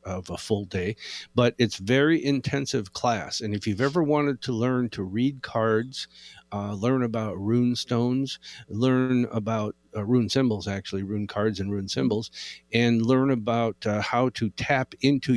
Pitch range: 105-130 Hz